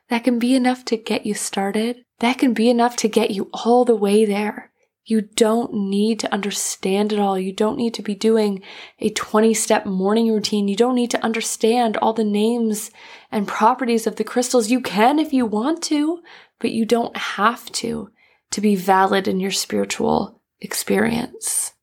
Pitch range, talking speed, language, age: 210-245 Hz, 185 wpm, English, 20-39